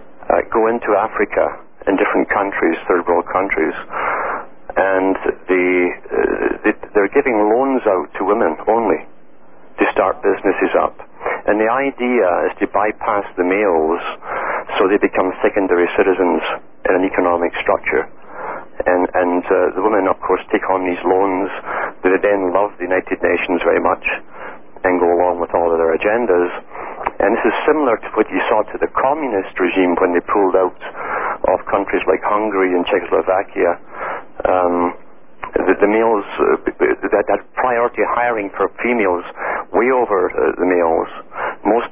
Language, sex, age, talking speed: English, male, 60-79, 155 wpm